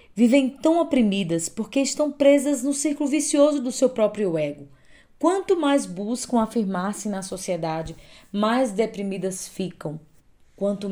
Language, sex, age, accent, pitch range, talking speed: Portuguese, female, 20-39, Brazilian, 175-235 Hz, 125 wpm